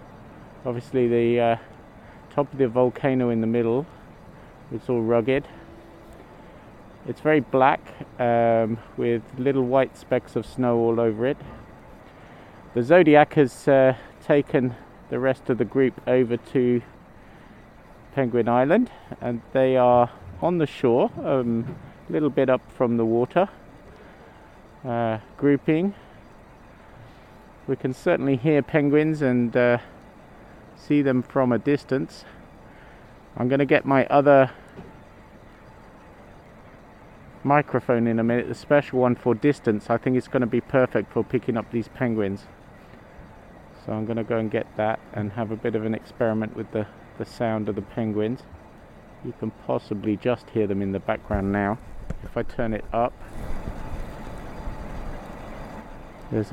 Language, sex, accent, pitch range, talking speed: English, male, British, 110-135 Hz, 140 wpm